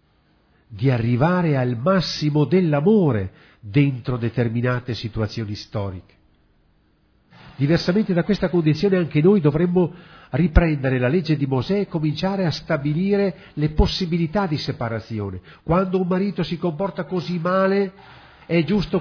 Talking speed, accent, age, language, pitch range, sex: 120 wpm, native, 50-69, Italian, 110-175 Hz, male